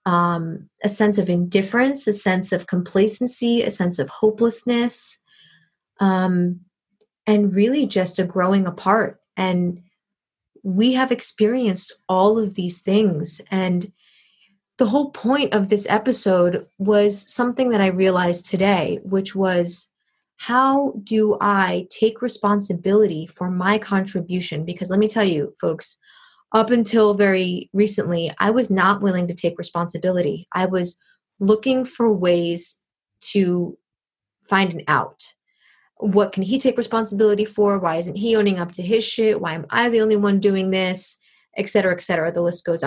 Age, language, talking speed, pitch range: 20-39, English, 150 wpm, 185-220 Hz